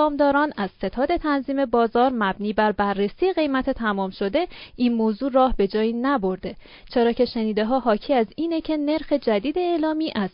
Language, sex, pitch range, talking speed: Persian, female, 210-280 Hz, 170 wpm